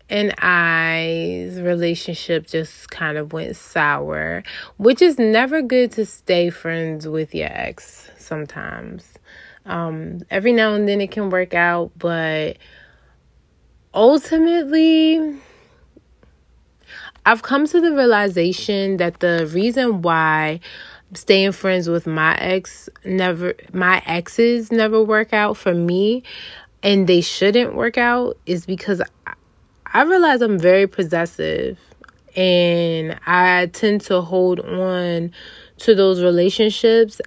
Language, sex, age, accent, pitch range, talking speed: English, female, 20-39, American, 170-215 Hz, 120 wpm